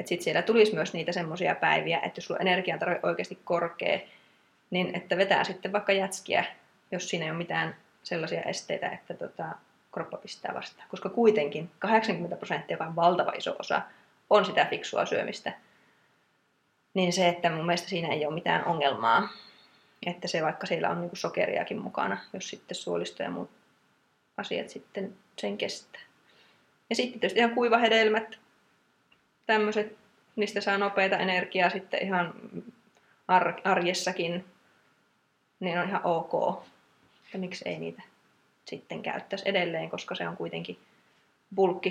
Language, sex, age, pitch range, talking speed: Finnish, female, 20-39, 170-200 Hz, 145 wpm